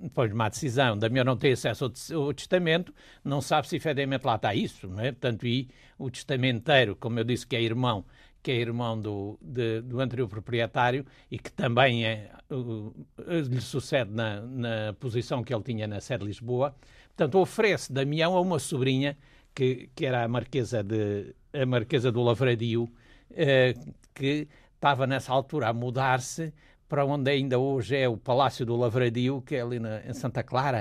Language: Portuguese